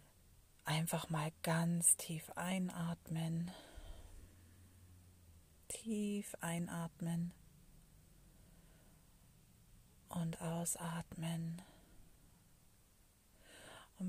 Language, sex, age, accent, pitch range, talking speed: German, female, 40-59, German, 160-185 Hz, 45 wpm